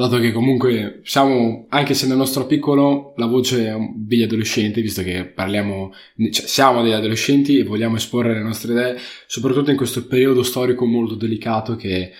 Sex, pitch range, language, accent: male, 110-135 Hz, Italian, native